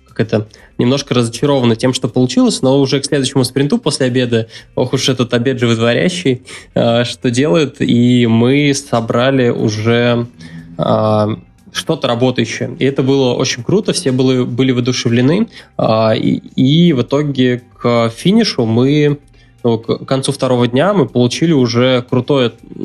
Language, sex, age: Russian, male, 20-39